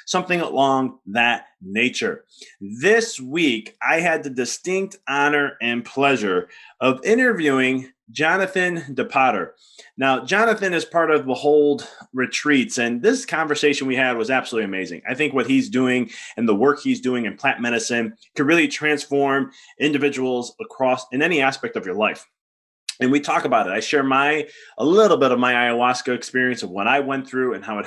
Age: 20-39